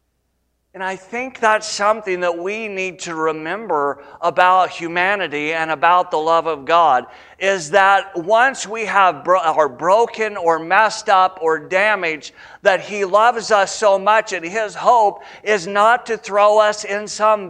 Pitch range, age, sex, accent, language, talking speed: 110-185 Hz, 50-69, male, American, English, 160 wpm